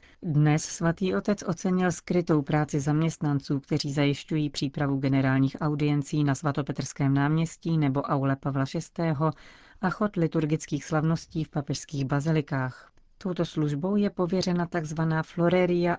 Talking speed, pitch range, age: 120 wpm, 140-170 Hz, 40-59